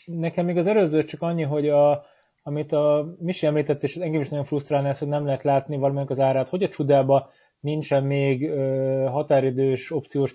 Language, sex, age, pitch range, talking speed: Hungarian, male, 20-39, 135-150 Hz, 190 wpm